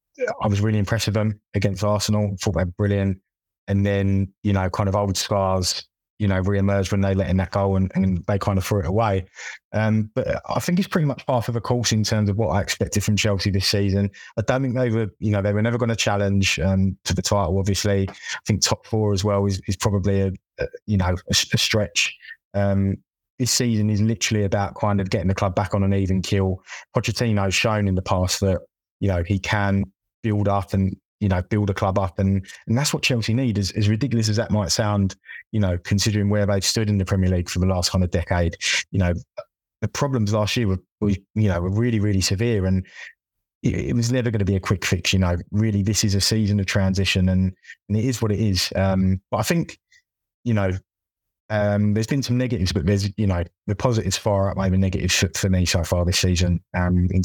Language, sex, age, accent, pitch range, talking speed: English, male, 20-39, British, 95-110 Hz, 240 wpm